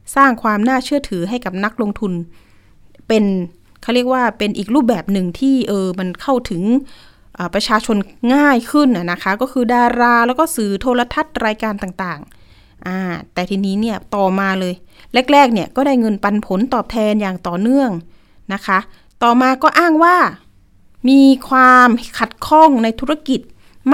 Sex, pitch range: female, 190-260 Hz